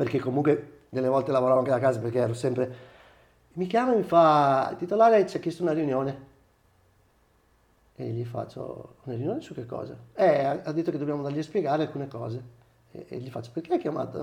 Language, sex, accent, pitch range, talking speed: Italian, male, native, 125-175 Hz, 200 wpm